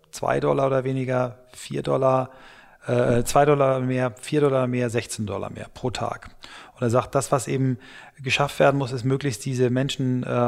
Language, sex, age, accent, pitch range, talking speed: German, male, 30-49, German, 115-135 Hz, 185 wpm